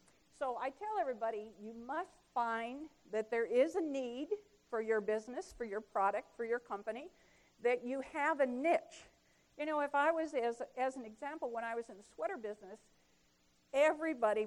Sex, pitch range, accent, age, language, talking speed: female, 215-270 Hz, American, 50-69, English, 180 wpm